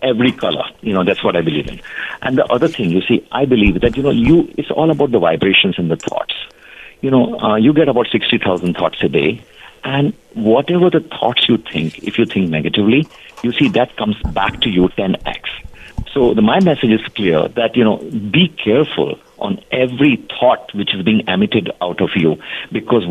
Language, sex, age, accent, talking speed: English, male, 50-69, Indian, 205 wpm